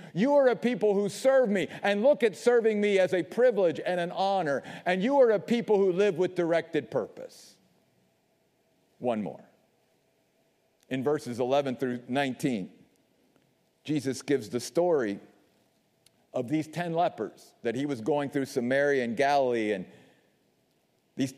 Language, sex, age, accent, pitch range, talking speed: English, male, 50-69, American, 170-235 Hz, 150 wpm